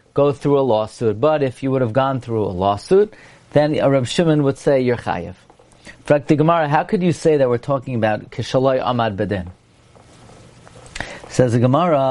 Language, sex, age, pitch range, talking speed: English, male, 40-59, 125-150 Hz, 200 wpm